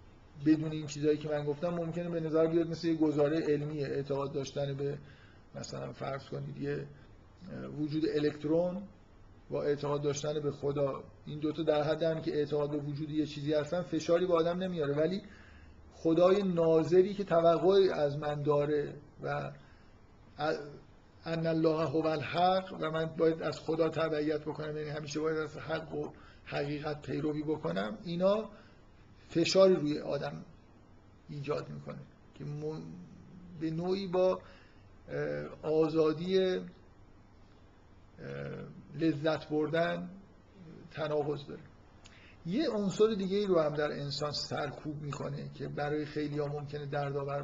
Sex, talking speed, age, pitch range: male, 130 wpm, 50-69, 135-165 Hz